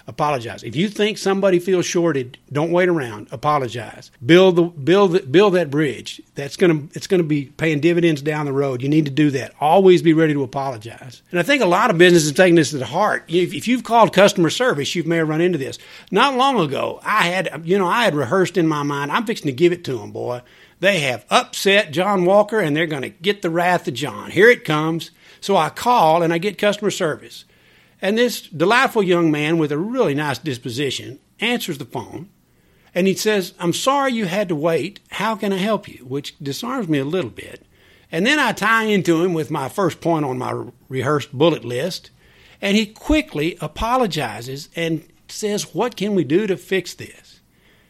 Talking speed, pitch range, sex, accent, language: 210 wpm, 145-205 Hz, male, American, English